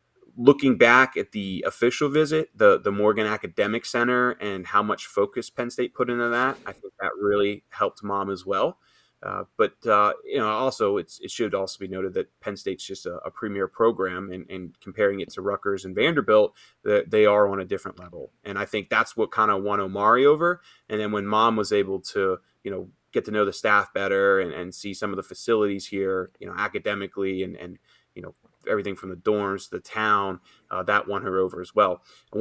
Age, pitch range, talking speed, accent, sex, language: 20-39, 95-125 Hz, 220 wpm, American, male, English